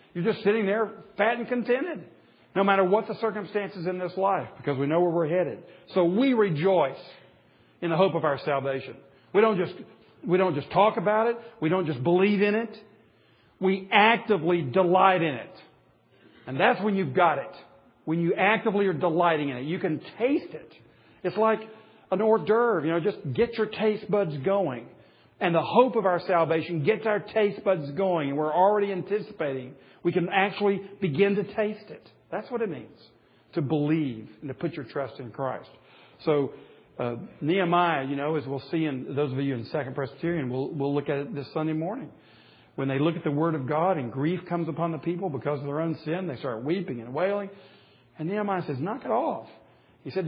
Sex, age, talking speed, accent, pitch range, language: male, 50-69, 205 wpm, American, 150-205 Hz, English